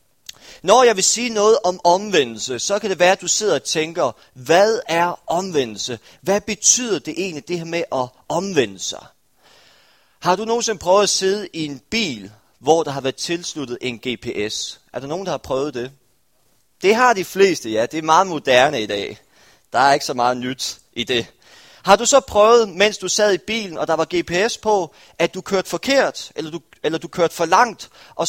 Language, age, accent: Danish, 30-49, native